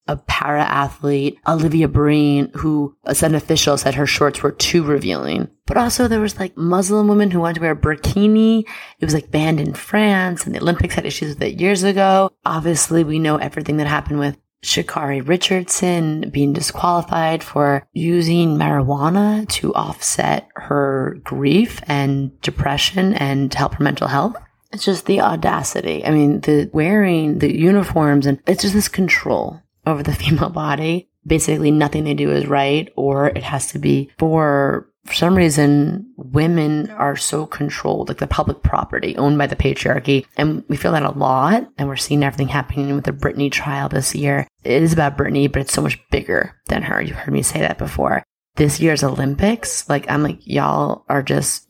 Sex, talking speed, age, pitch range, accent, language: female, 180 wpm, 30-49, 140-170 Hz, American, English